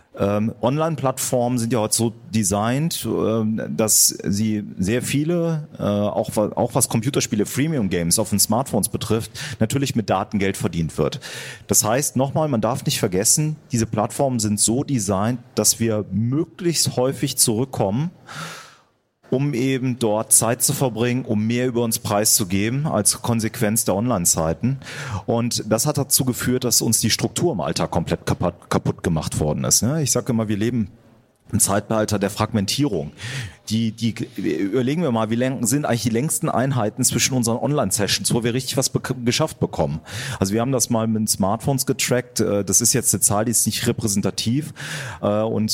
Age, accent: 40-59, German